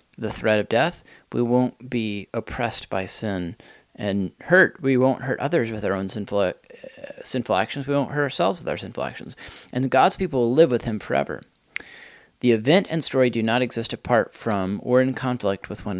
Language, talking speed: English, 200 wpm